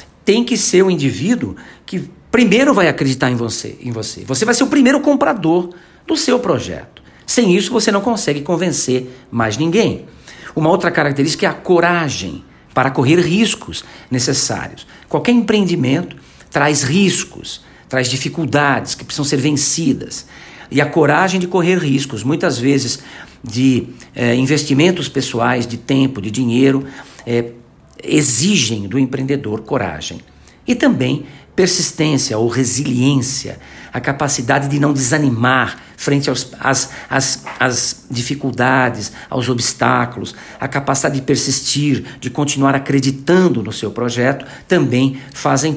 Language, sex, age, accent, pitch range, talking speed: Portuguese, male, 50-69, Brazilian, 125-170 Hz, 130 wpm